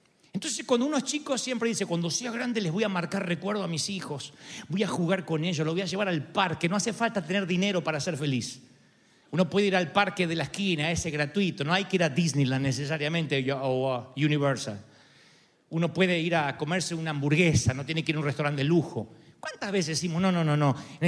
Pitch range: 160-235 Hz